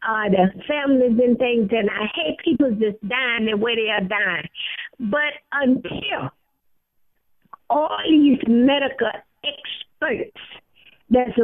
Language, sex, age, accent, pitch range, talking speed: English, female, 50-69, American, 235-300 Hz, 125 wpm